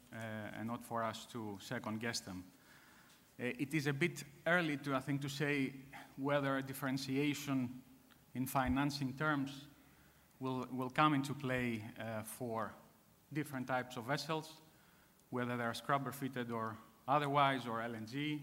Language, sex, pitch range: English, male, 120-140 Hz